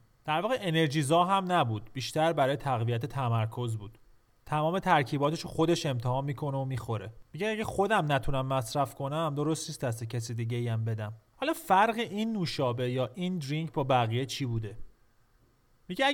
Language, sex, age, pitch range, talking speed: Persian, male, 30-49, 120-165 Hz, 165 wpm